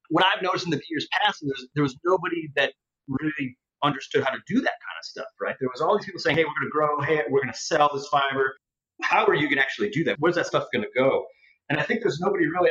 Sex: male